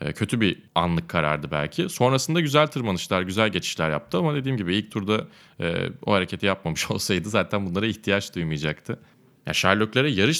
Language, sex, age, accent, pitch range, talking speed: Turkish, male, 30-49, native, 85-125 Hz, 155 wpm